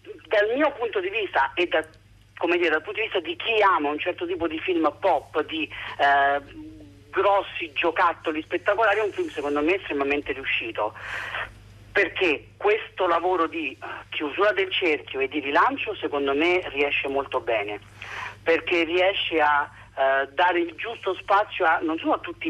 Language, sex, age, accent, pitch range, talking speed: Italian, male, 40-59, native, 140-210 Hz, 165 wpm